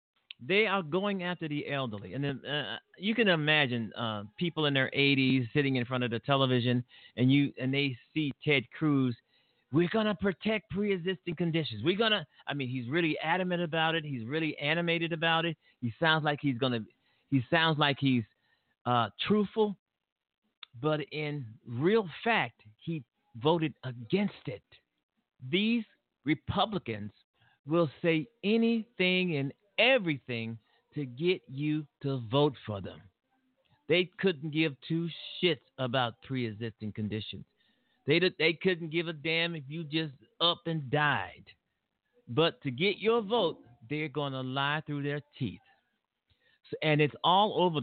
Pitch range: 130-175 Hz